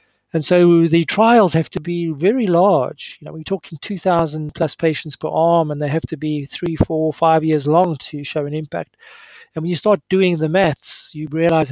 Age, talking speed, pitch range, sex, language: 40-59, 215 wpm, 150-180 Hz, male, English